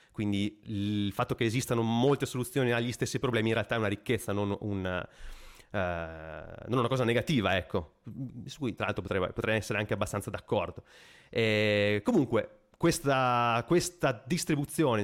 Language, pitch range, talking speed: Italian, 105-130 Hz, 150 wpm